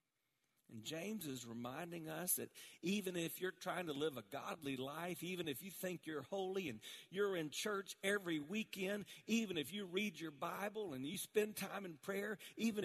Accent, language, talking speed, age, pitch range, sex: American, English, 185 wpm, 50-69, 150-210 Hz, male